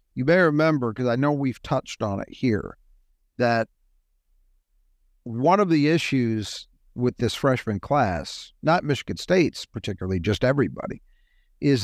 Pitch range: 115-160 Hz